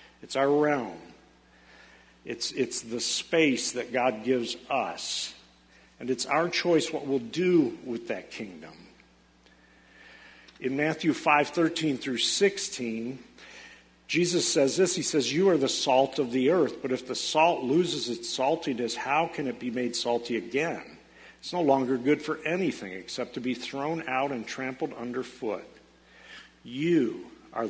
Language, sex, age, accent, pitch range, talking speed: English, male, 50-69, American, 120-150 Hz, 150 wpm